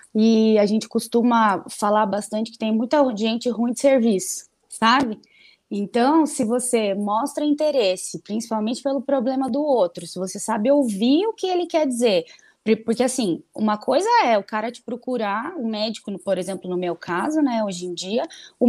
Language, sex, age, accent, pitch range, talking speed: Portuguese, female, 20-39, Brazilian, 220-290 Hz, 175 wpm